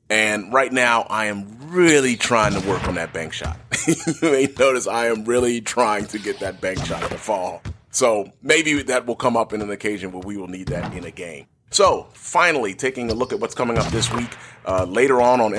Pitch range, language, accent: 105-130 Hz, English, American